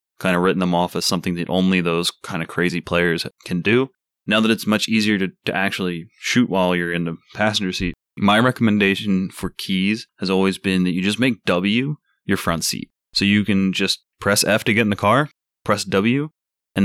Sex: male